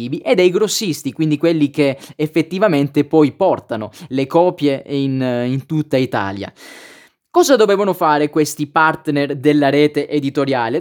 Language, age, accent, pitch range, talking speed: Italian, 20-39, native, 130-160 Hz, 130 wpm